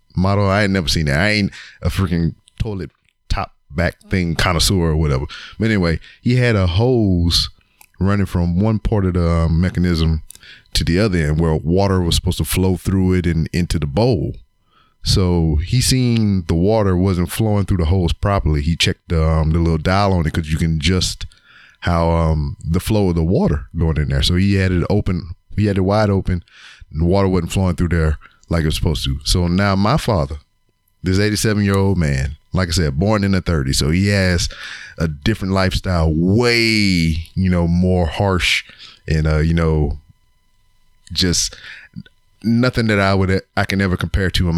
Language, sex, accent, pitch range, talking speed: English, male, American, 80-100 Hz, 195 wpm